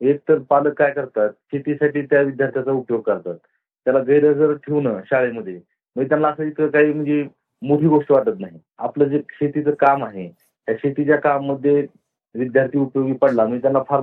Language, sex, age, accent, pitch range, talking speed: Marathi, male, 40-59, native, 130-150 Hz, 165 wpm